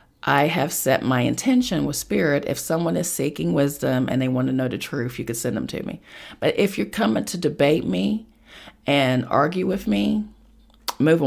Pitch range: 125-170 Hz